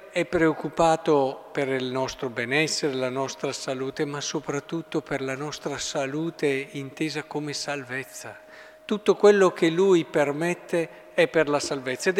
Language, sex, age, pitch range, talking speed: Italian, male, 50-69, 150-200 Hz, 140 wpm